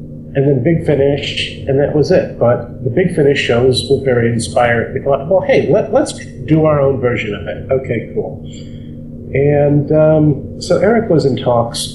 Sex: male